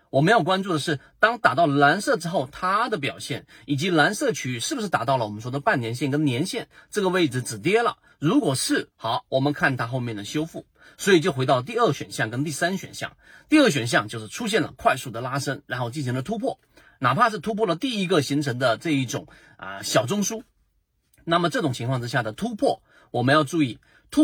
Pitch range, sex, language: 130-185 Hz, male, Chinese